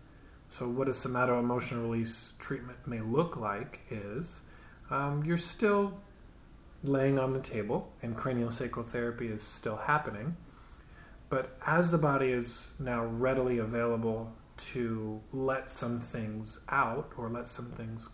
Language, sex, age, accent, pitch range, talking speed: English, male, 30-49, American, 115-140 Hz, 140 wpm